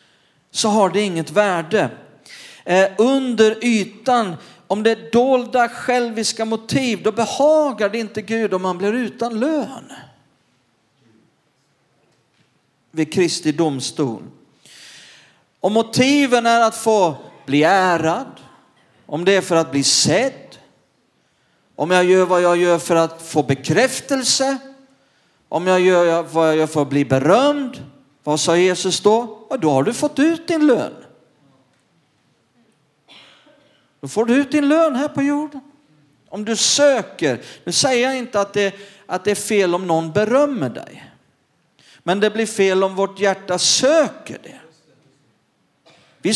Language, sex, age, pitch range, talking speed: Swedish, male, 40-59, 165-255 Hz, 140 wpm